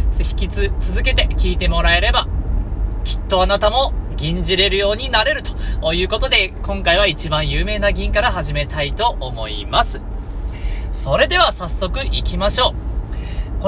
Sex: male